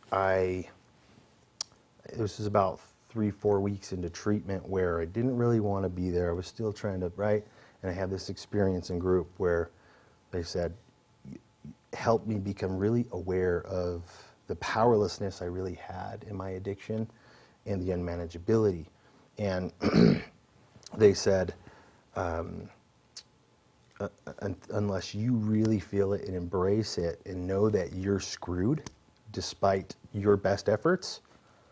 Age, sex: 30-49, male